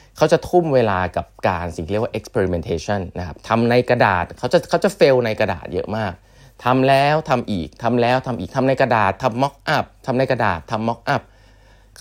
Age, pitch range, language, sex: 20-39, 100-130 Hz, Thai, male